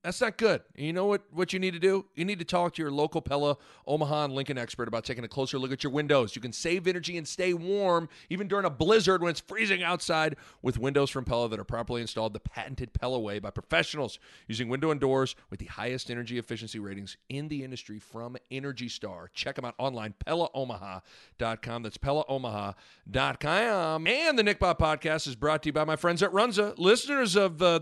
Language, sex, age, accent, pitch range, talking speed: English, male, 40-59, American, 110-160 Hz, 215 wpm